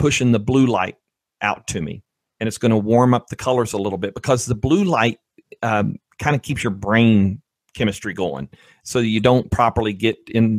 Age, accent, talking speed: 40-59, American, 205 wpm